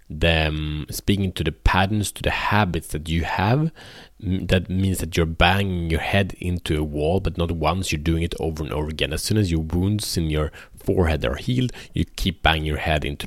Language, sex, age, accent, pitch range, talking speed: Swedish, male, 30-49, Norwegian, 80-100 Hz, 215 wpm